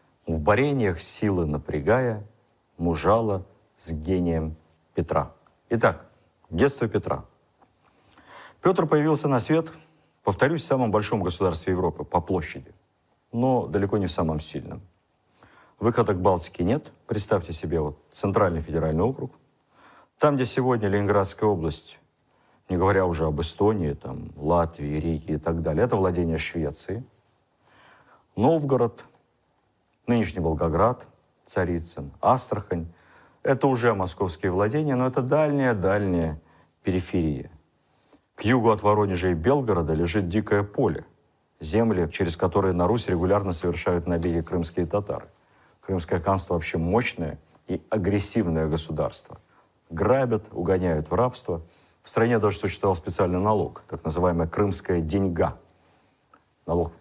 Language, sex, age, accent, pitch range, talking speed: Russian, male, 50-69, native, 85-110 Hz, 120 wpm